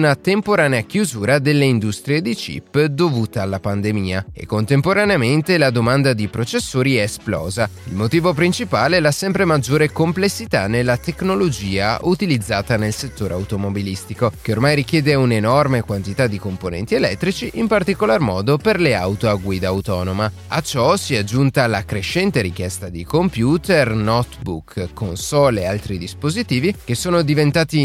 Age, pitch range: 30-49, 105-155 Hz